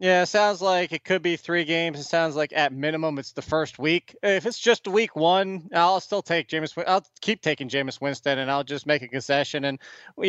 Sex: male